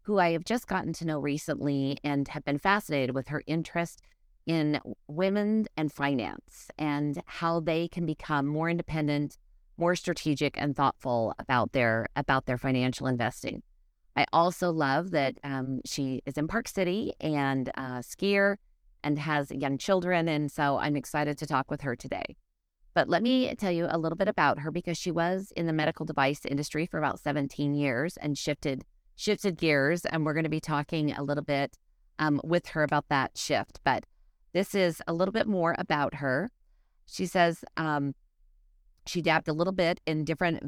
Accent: American